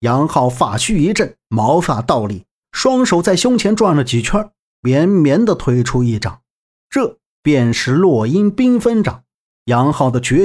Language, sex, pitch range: Chinese, male, 125-205 Hz